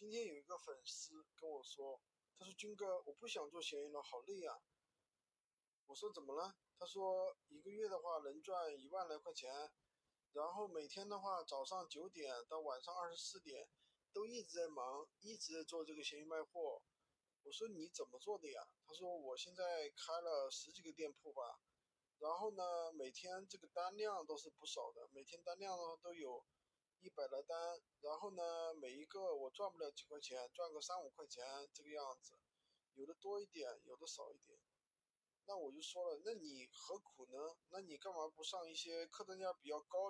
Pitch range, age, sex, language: 150-215 Hz, 20-39, male, Chinese